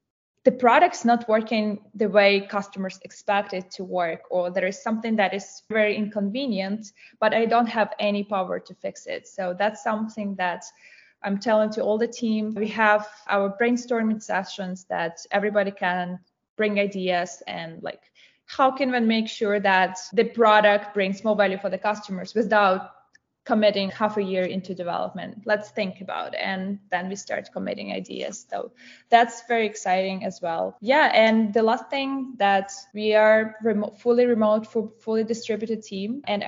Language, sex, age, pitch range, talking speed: English, female, 20-39, 190-220 Hz, 170 wpm